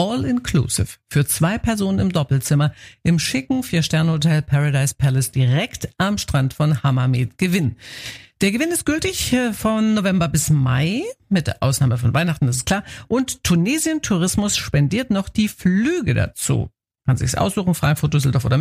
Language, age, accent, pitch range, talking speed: German, 50-69, German, 135-210 Hz, 150 wpm